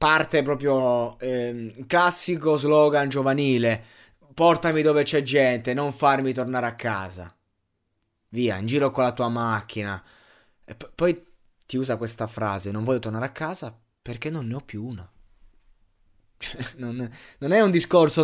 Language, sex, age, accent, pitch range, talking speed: Italian, male, 20-39, native, 115-140 Hz, 150 wpm